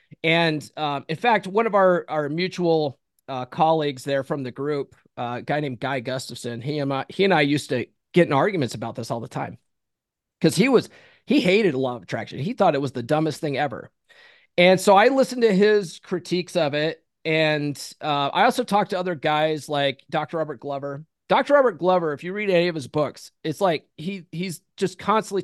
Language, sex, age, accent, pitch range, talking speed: English, male, 30-49, American, 145-185 Hz, 205 wpm